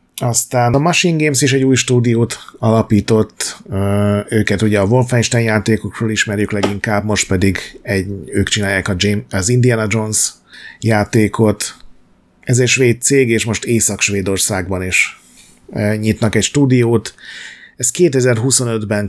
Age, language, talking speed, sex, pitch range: 30-49, Hungarian, 115 wpm, male, 100-125 Hz